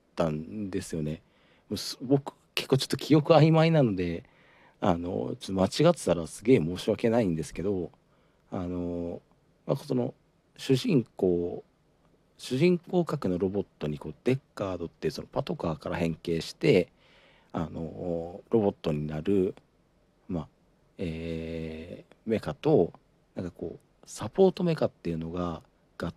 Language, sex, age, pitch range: Japanese, male, 50-69, 85-130 Hz